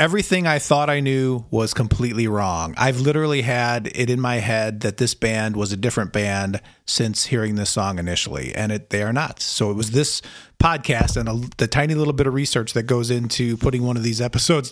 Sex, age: male, 40-59